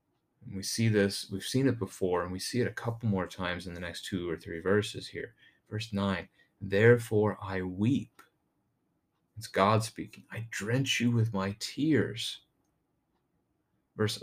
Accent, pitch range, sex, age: American, 95-115 Hz, male, 30-49